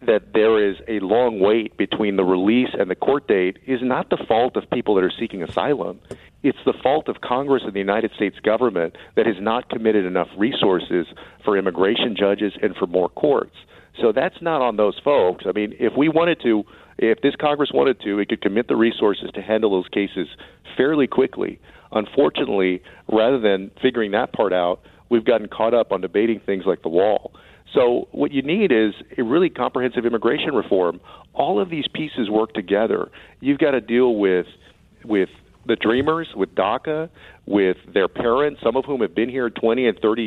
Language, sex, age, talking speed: English, male, 50-69, 190 wpm